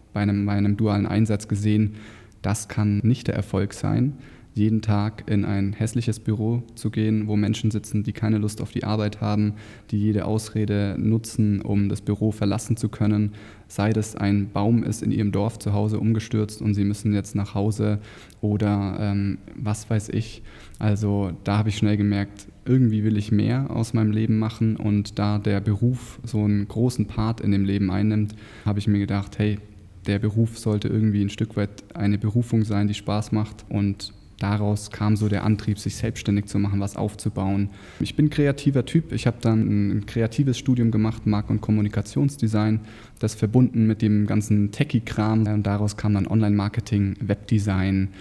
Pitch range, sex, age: 100-110 Hz, male, 20-39